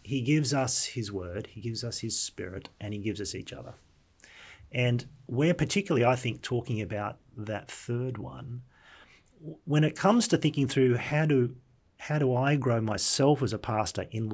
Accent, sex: Australian, male